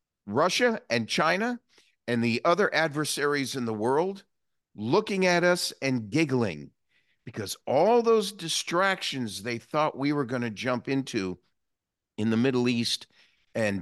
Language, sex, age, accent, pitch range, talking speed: English, male, 50-69, American, 115-165 Hz, 140 wpm